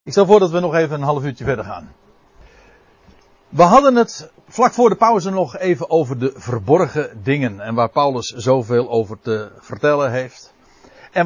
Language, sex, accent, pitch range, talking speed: Dutch, male, Dutch, 125-170 Hz, 180 wpm